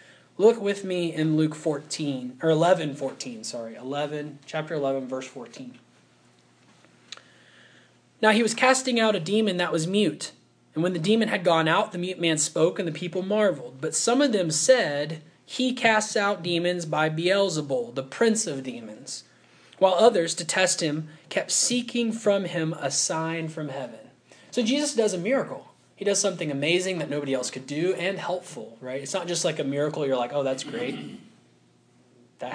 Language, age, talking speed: English, 20-39, 180 wpm